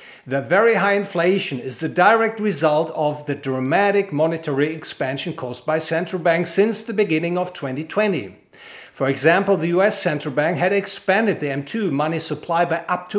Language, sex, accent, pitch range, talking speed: English, male, German, 150-195 Hz, 170 wpm